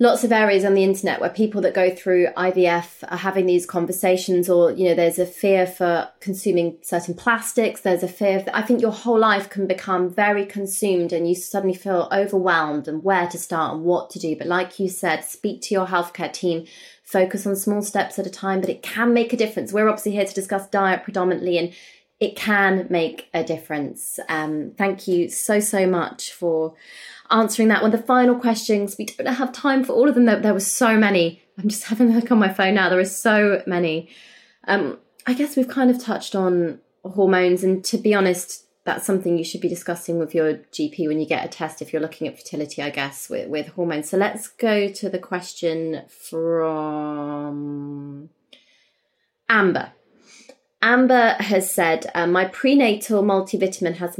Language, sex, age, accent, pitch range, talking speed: English, female, 20-39, British, 175-210 Hz, 200 wpm